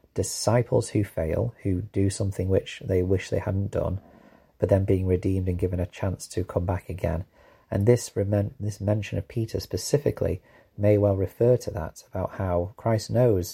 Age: 30-49